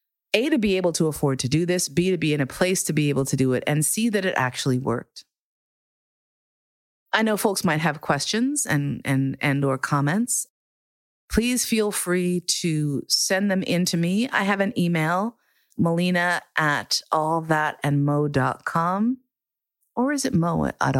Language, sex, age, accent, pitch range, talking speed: English, female, 30-49, American, 140-190 Hz, 165 wpm